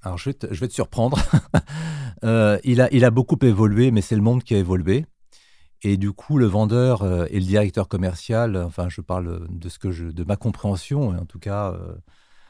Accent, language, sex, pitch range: French, French, male, 90-110 Hz